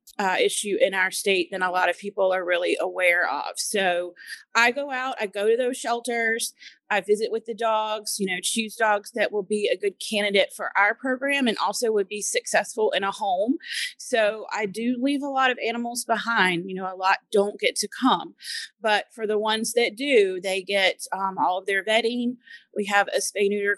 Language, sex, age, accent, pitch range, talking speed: English, female, 30-49, American, 200-250 Hz, 210 wpm